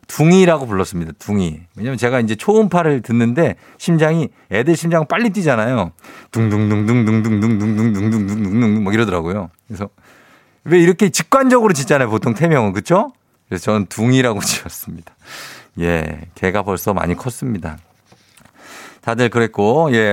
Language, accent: Korean, native